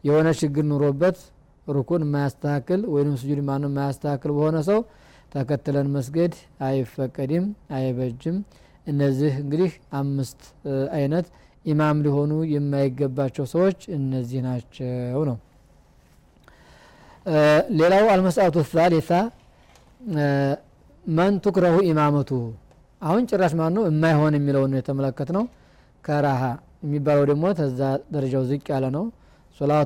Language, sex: Amharic, male